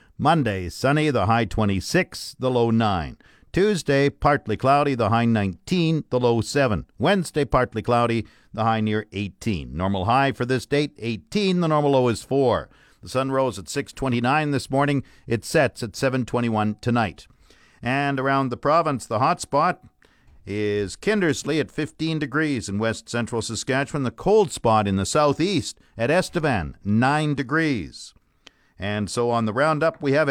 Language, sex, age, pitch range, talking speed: English, male, 50-69, 110-145 Hz, 160 wpm